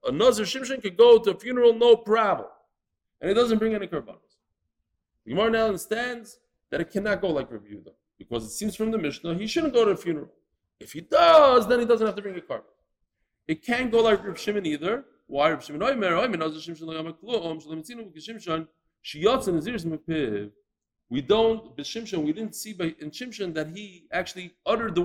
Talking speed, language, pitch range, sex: 170 wpm, English, 170-235 Hz, male